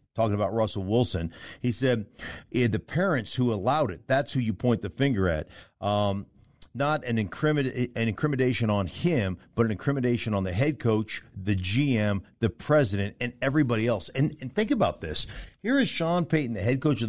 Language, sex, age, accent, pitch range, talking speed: English, male, 50-69, American, 100-135 Hz, 185 wpm